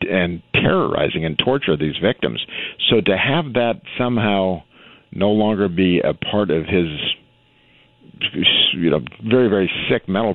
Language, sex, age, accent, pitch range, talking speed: English, male, 50-69, American, 85-105 Hz, 140 wpm